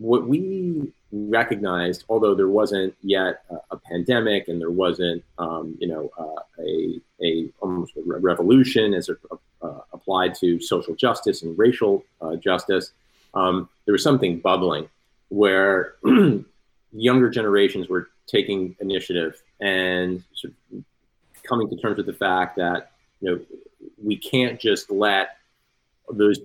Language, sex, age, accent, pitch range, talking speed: English, male, 30-49, American, 90-115 Hz, 135 wpm